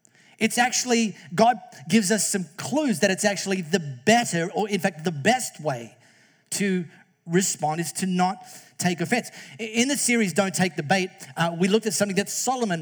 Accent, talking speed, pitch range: Australian, 185 wpm, 175-230 Hz